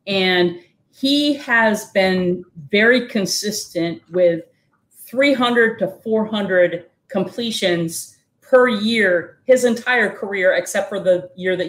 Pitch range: 180-235 Hz